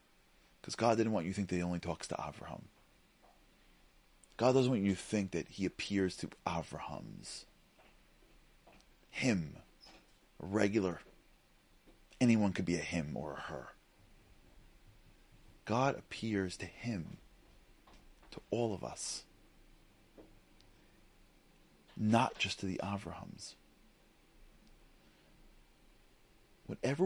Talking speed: 110 wpm